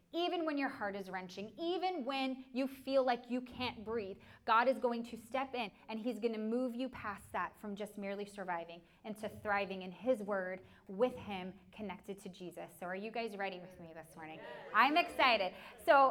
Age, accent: 20-39, American